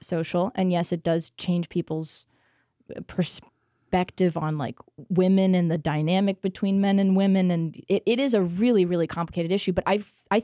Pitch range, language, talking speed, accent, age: 170-210 Hz, English, 170 wpm, American, 20-39